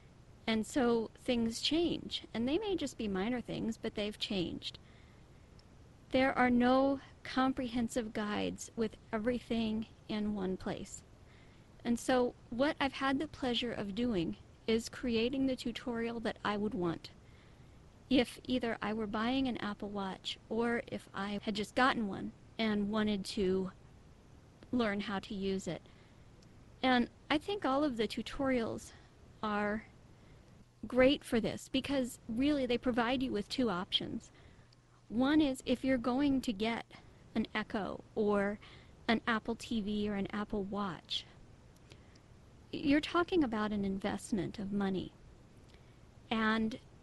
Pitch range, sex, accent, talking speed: 210-260 Hz, female, American, 140 wpm